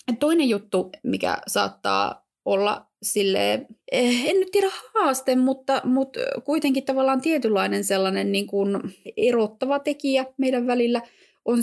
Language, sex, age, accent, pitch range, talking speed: Finnish, female, 20-39, native, 195-255 Hz, 120 wpm